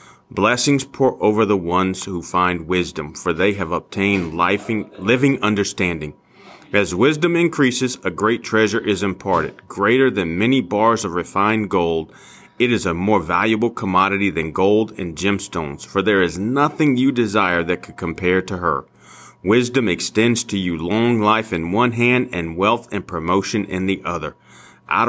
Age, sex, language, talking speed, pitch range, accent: 40-59, male, English, 160 wpm, 95-120 Hz, American